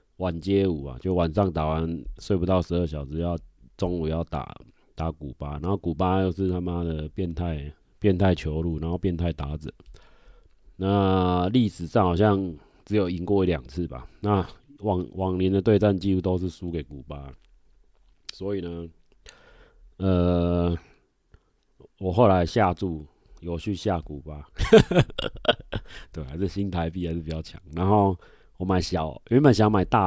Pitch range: 80-95 Hz